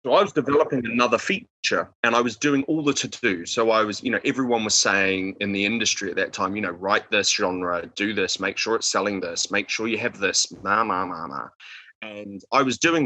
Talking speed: 240 wpm